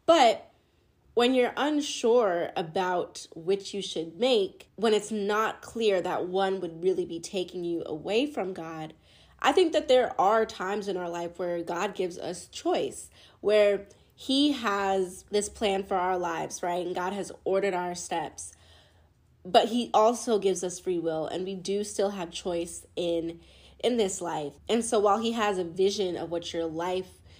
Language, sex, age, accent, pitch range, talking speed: English, female, 20-39, American, 175-215 Hz, 175 wpm